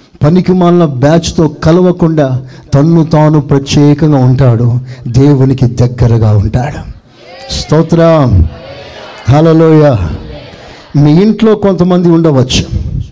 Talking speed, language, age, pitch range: 70 wpm, Telugu, 50-69, 140-200 Hz